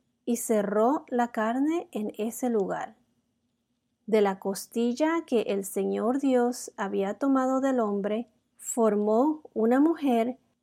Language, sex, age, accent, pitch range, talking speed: Spanish, female, 40-59, American, 210-250 Hz, 120 wpm